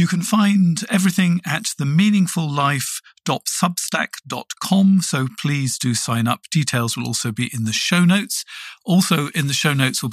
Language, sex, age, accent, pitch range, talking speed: English, male, 50-69, British, 125-180 Hz, 150 wpm